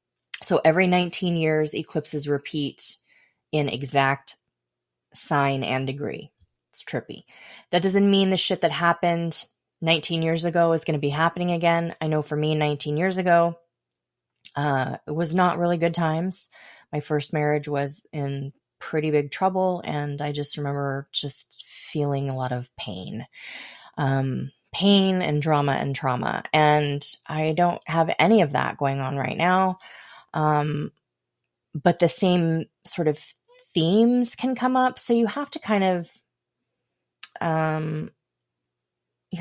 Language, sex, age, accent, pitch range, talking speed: English, female, 20-39, American, 140-170 Hz, 145 wpm